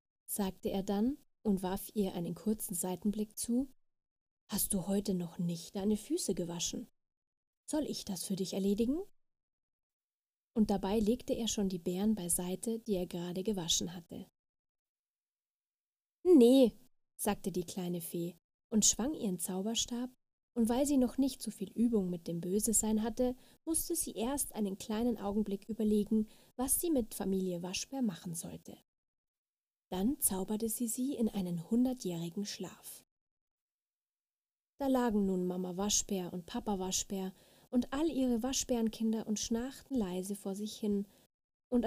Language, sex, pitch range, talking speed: German, female, 190-235 Hz, 145 wpm